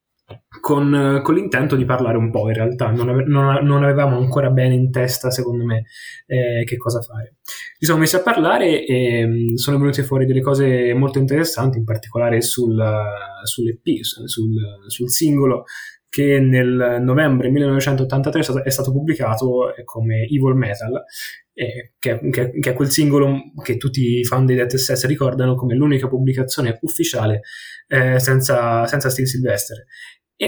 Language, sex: Italian, male